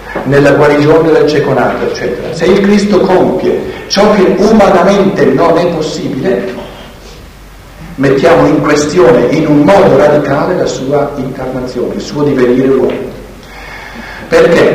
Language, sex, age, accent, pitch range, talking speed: Italian, male, 60-79, native, 150-215 Hz, 120 wpm